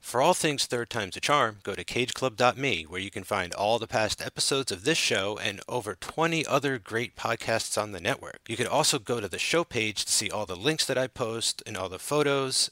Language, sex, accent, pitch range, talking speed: English, male, American, 110-140 Hz, 235 wpm